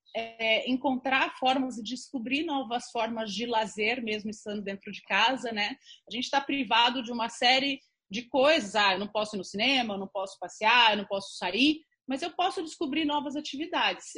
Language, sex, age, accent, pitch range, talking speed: Portuguese, female, 30-49, Brazilian, 210-275 Hz, 195 wpm